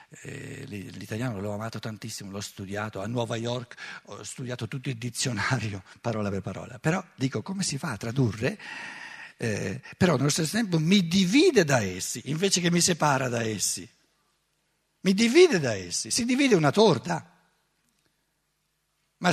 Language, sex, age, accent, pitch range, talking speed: Italian, male, 60-79, native, 120-185 Hz, 150 wpm